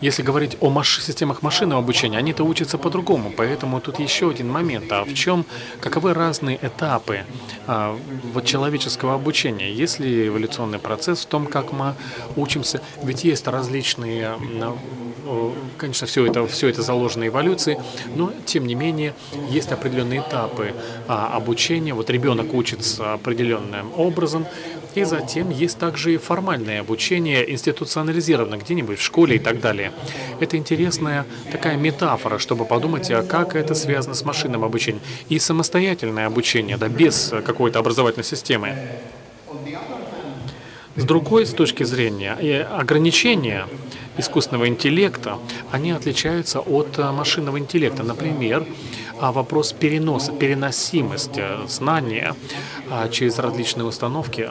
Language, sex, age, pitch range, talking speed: Russian, male, 30-49, 120-155 Hz, 125 wpm